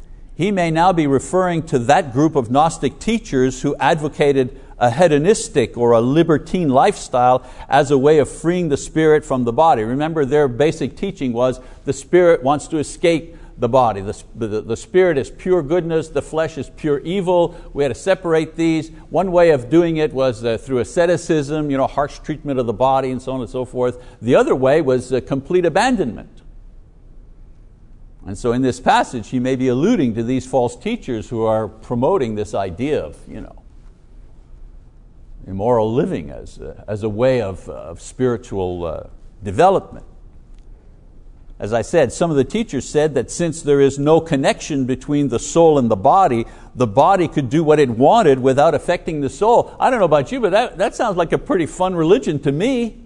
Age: 60-79